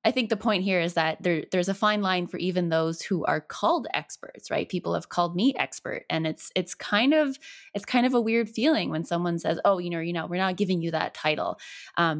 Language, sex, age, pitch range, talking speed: English, female, 20-39, 170-230 Hz, 250 wpm